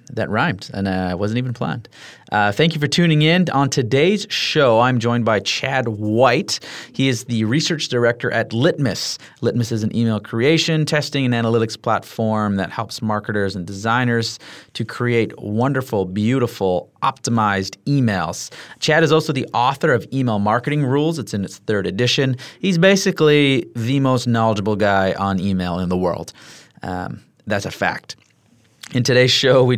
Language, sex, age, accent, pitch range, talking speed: English, male, 30-49, American, 105-140 Hz, 165 wpm